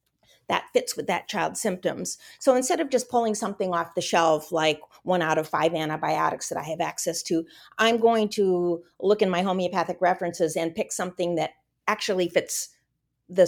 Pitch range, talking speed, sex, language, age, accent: 165-200 Hz, 180 wpm, female, English, 40-59, American